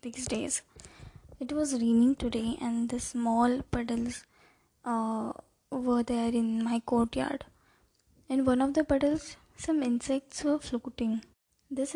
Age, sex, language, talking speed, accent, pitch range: 20-39, female, English, 125 wpm, Indian, 235-265 Hz